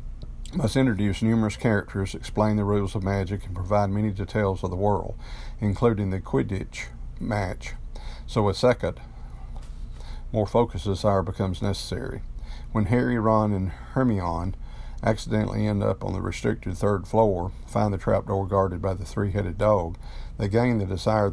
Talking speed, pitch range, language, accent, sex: 150 wpm, 95-110 Hz, English, American, male